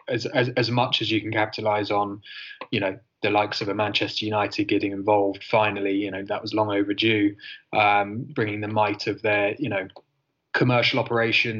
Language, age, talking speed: English, 20-39, 185 wpm